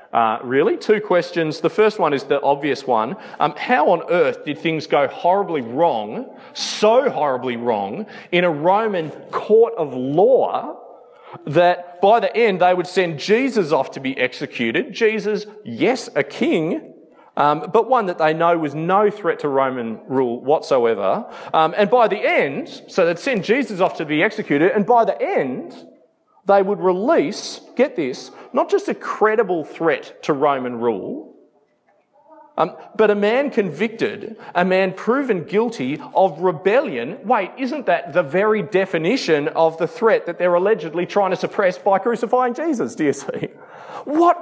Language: English